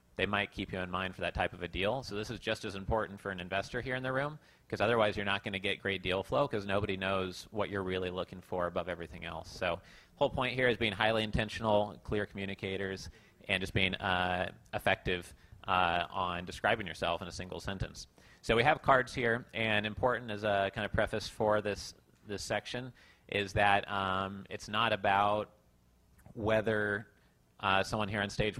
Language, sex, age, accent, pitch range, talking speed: English, male, 30-49, American, 95-105 Hz, 205 wpm